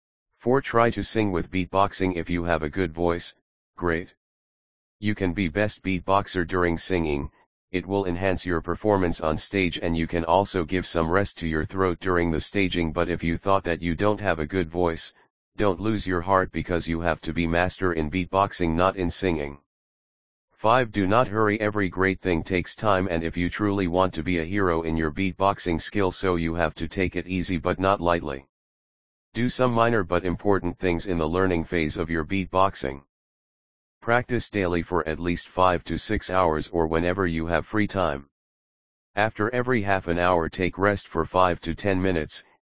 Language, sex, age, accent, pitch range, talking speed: English, male, 40-59, American, 85-100 Hz, 195 wpm